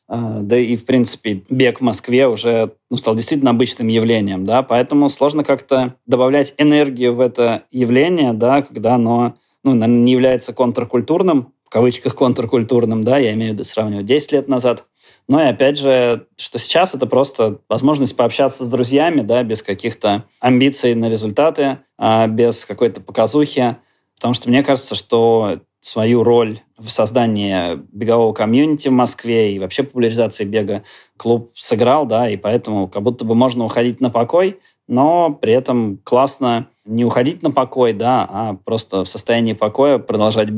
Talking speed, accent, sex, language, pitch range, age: 160 wpm, native, male, Russian, 110-130 Hz, 20-39